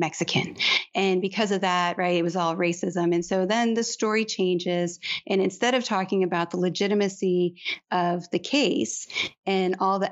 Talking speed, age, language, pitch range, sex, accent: 170 wpm, 30-49, English, 180-210 Hz, female, American